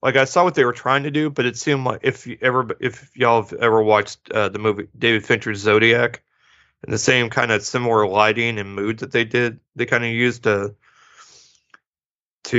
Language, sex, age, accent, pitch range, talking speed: English, male, 30-49, American, 105-120 Hz, 215 wpm